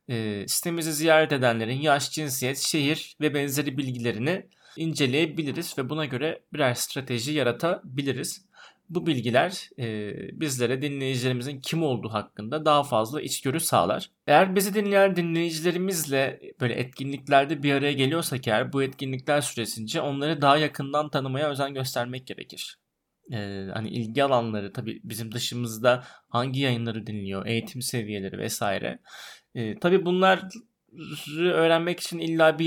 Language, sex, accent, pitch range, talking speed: Turkish, male, native, 120-155 Hz, 125 wpm